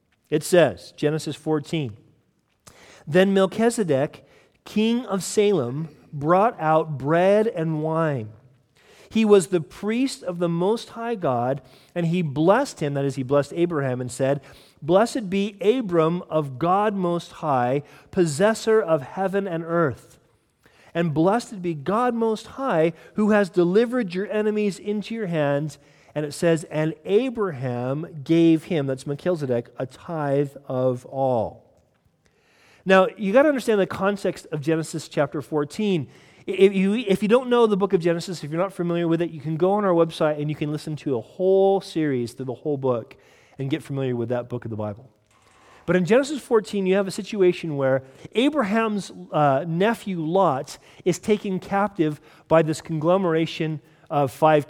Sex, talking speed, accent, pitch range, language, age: male, 160 wpm, American, 145-195 Hz, English, 40-59